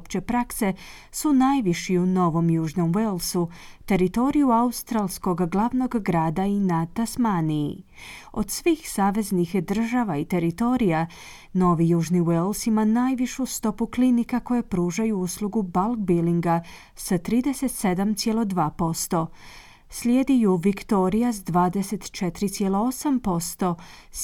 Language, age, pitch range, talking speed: Croatian, 30-49, 170-230 Hz, 95 wpm